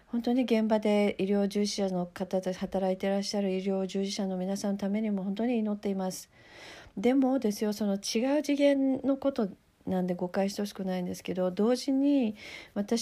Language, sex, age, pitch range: Japanese, female, 40-59, 185-210 Hz